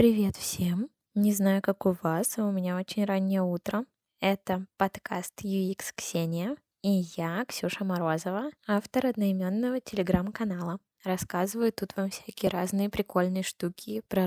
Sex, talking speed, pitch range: female, 135 wpm, 185-205 Hz